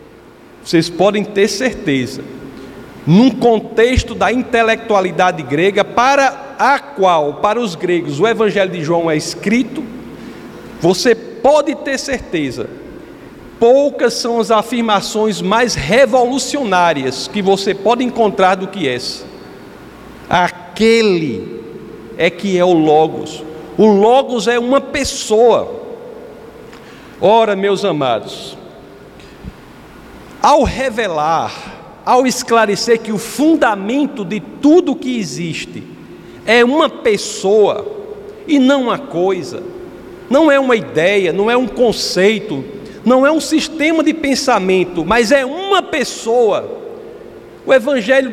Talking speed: 110 wpm